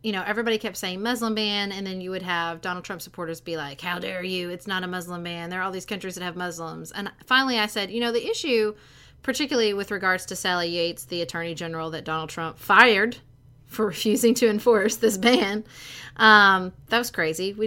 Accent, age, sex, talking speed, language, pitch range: American, 30-49, female, 220 wpm, English, 170-225 Hz